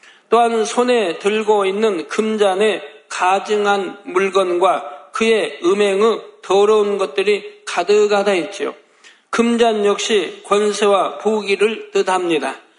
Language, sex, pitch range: Korean, male, 195-225 Hz